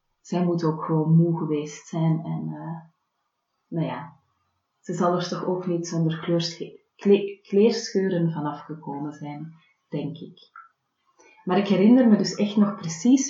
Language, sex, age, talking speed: Dutch, female, 30-49, 145 wpm